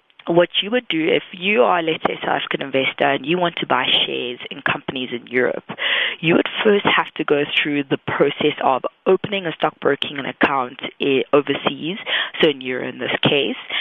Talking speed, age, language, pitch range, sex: 185 wpm, 20-39, English, 145-180 Hz, female